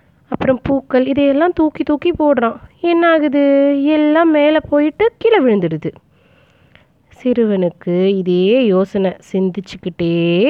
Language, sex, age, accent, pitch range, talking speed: Tamil, female, 20-39, native, 155-225 Hz, 95 wpm